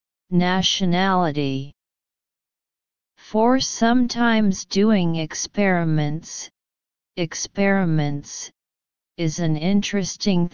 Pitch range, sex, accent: 145-195 Hz, female, American